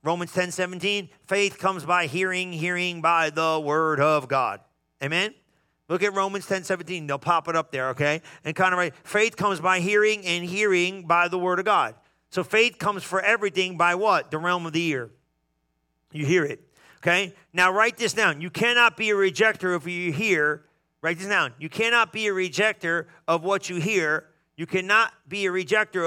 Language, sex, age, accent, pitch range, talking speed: English, male, 40-59, American, 160-200 Hz, 195 wpm